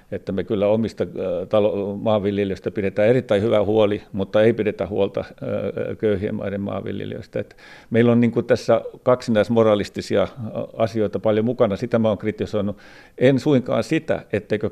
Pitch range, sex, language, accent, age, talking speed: 100-115 Hz, male, Finnish, native, 50-69, 140 wpm